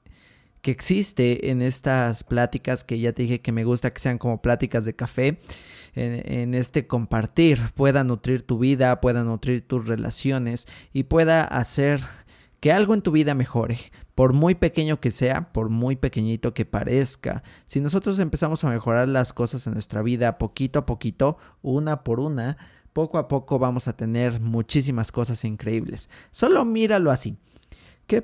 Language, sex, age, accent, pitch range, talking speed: Spanish, male, 30-49, Mexican, 120-150 Hz, 165 wpm